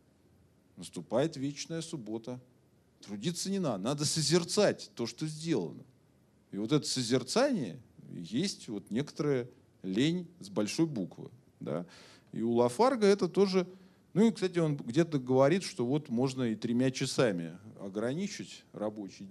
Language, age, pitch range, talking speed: Russian, 40-59, 115-170 Hz, 125 wpm